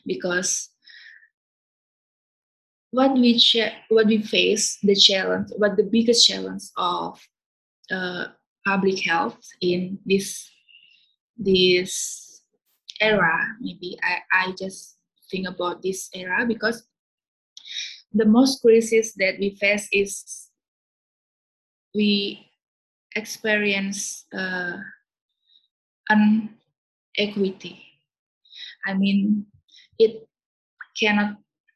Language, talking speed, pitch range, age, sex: English, 85 wpm, 195-230 Hz, 20-39, female